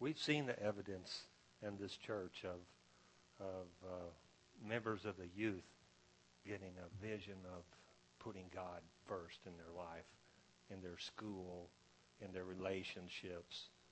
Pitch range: 85-110 Hz